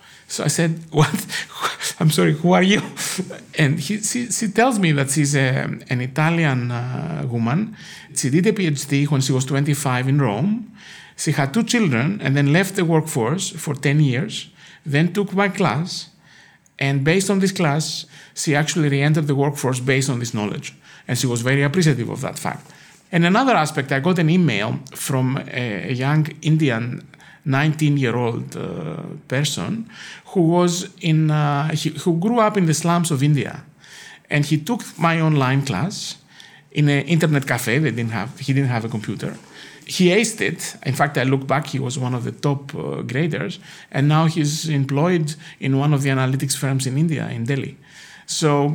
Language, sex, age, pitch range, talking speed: English, male, 50-69, 140-170 Hz, 180 wpm